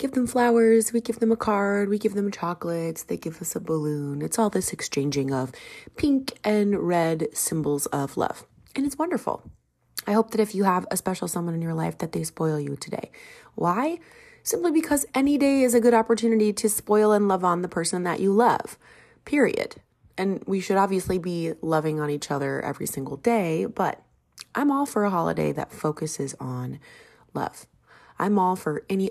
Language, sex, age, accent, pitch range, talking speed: English, female, 30-49, American, 150-210 Hz, 195 wpm